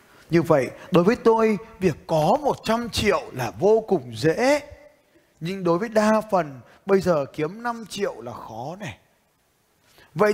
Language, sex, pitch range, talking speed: Vietnamese, male, 185-240 Hz, 155 wpm